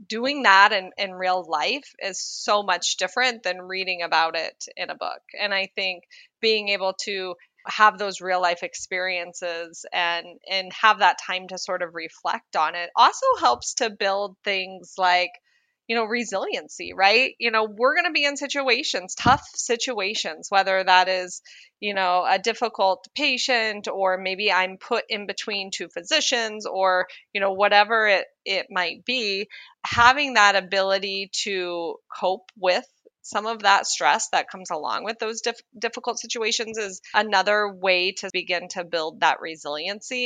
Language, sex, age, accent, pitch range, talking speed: English, female, 20-39, American, 185-225 Hz, 165 wpm